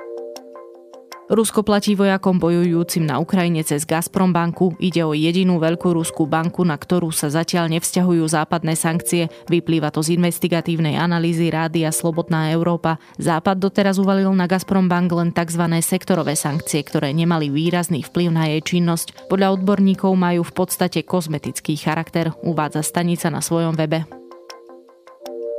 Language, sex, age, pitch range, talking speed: Slovak, female, 20-39, 160-180 Hz, 140 wpm